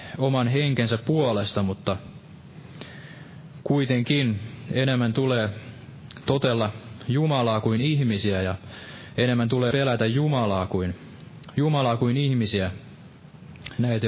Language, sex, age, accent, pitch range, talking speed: Finnish, male, 20-39, native, 110-135 Hz, 85 wpm